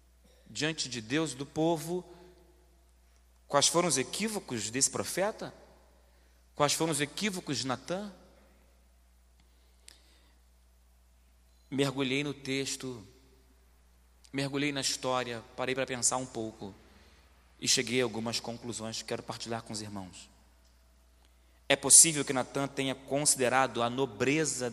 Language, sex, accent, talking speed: Portuguese, male, Brazilian, 115 wpm